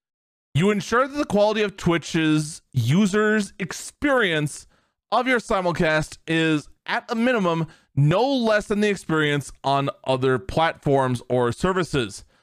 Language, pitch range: English, 155-225 Hz